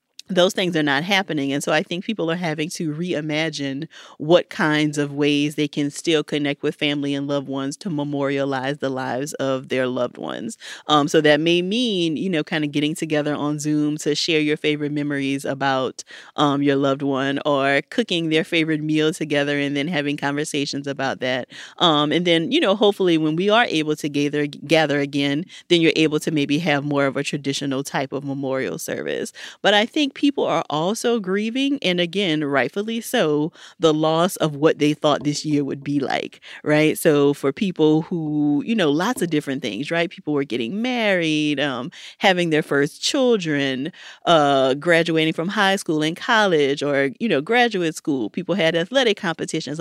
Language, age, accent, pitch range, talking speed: English, 40-59, American, 145-175 Hz, 190 wpm